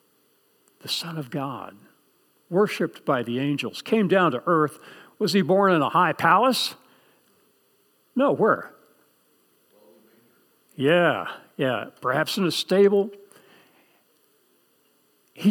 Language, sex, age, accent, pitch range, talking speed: English, male, 60-79, American, 140-185 Hz, 110 wpm